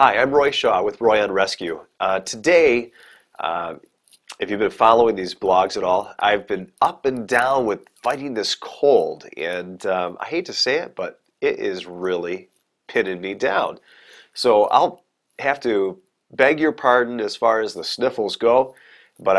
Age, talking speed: 30-49, 175 wpm